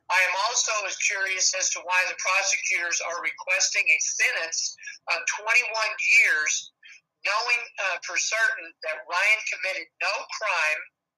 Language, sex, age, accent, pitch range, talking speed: English, male, 50-69, American, 180-220 Hz, 140 wpm